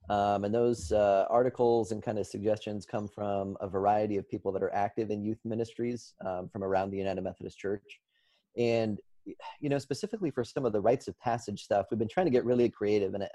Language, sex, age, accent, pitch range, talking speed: English, male, 30-49, American, 100-115 Hz, 215 wpm